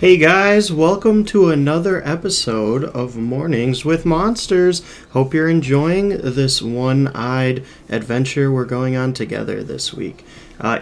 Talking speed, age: 130 wpm, 30-49